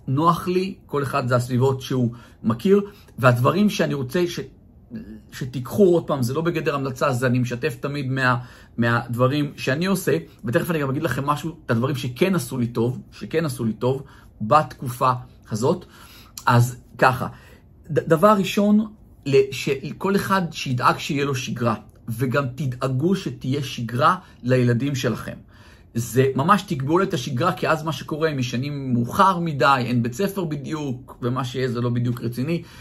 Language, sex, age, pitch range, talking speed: Hebrew, male, 50-69, 120-160 Hz, 150 wpm